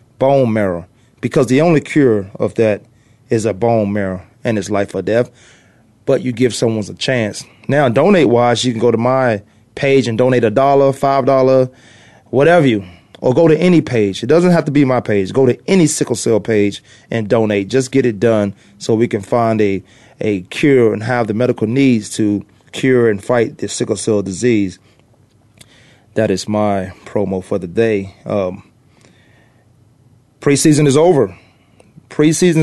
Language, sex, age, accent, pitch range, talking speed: English, male, 30-49, American, 110-140 Hz, 175 wpm